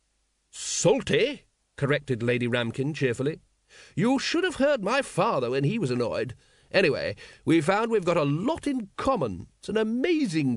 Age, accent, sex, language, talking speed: 40-59, British, male, English, 155 wpm